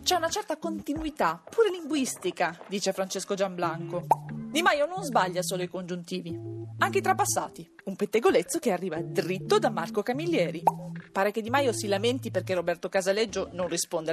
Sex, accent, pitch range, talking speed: female, native, 175-235 Hz, 160 wpm